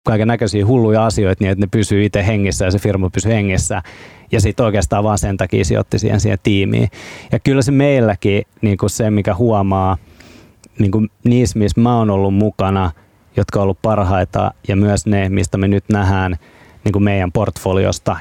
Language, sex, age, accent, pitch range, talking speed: Finnish, male, 20-39, native, 95-110 Hz, 185 wpm